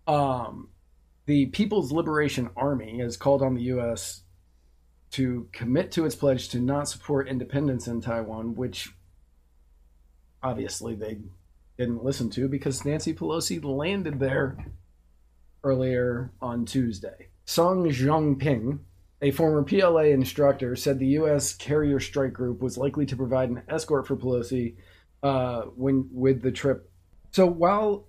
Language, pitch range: English, 95-140 Hz